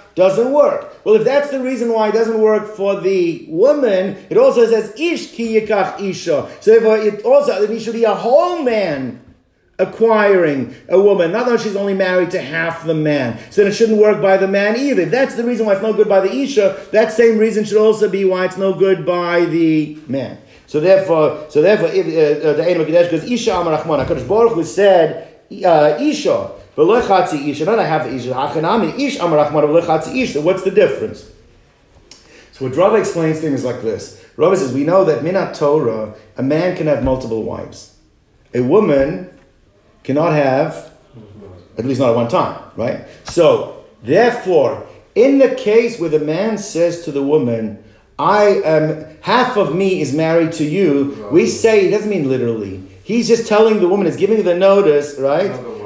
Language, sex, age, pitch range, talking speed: English, male, 50-69, 155-225 Hz, 180 wpm